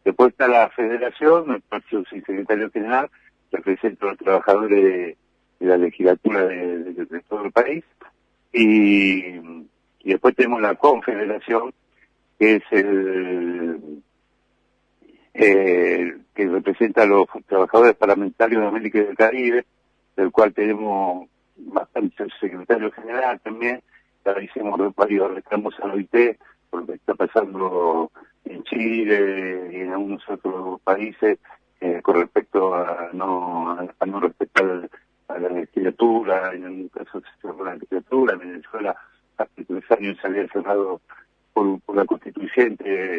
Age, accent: 70-89, Argentinian